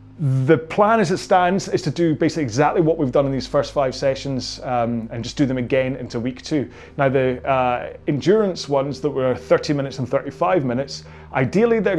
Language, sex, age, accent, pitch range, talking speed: English, male, 30-49, British, 120-160 Hz, 205 wpm